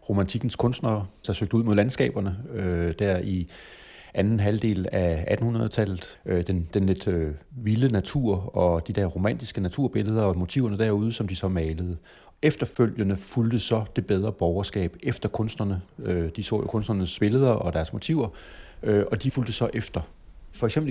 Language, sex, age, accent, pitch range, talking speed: English, male, 30-49, Danish, 95-120 Hz, 150 wpm